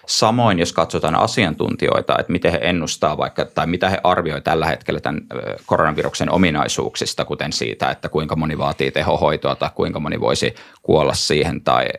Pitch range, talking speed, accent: 80-95 Hz, 160 wpm, native